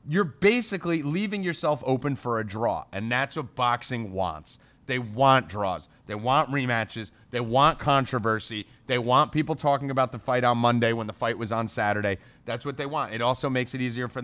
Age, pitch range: 30-49, 125-165 Hz